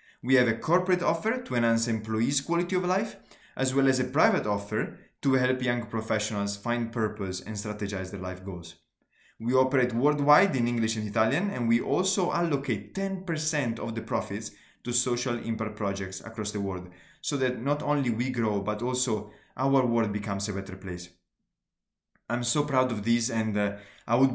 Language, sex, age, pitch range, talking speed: English, male, 20-39, 105-135 Hz, 180 wpm